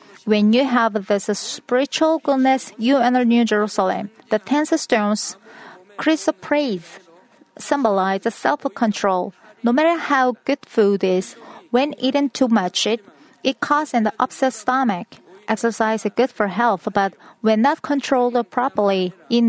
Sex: female